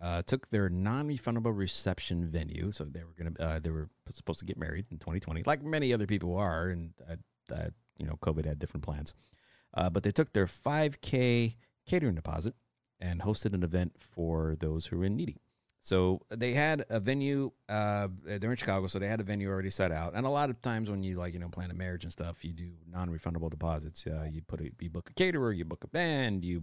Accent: American